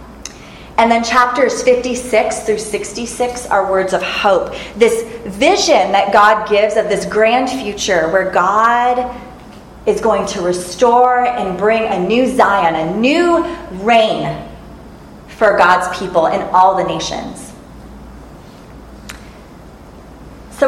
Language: English